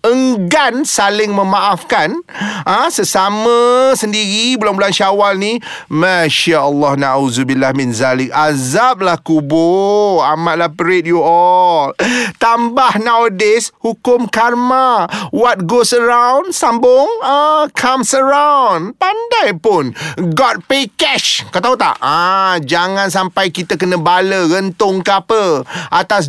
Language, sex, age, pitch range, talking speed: Malay, male, 30-49, 175-230 Hz, 115 wpm